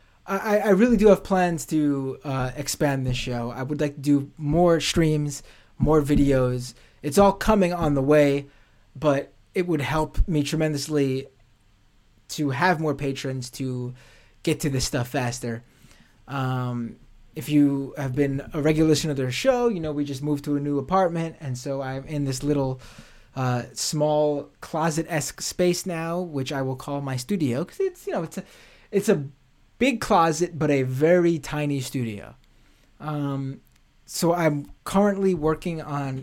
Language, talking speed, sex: English, 165 wpm, male